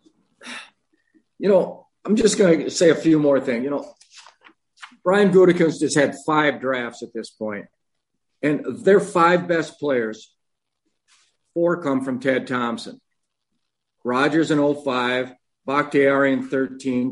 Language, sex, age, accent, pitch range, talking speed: English, male, 50-69, American, 125-155 Hz, 135 wpm